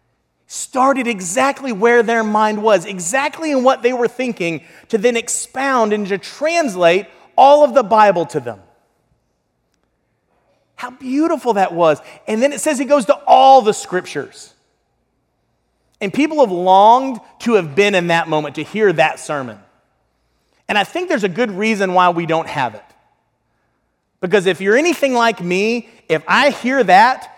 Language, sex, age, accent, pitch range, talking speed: English, male, 30-49, American, 170-255 Hz, 160 wpm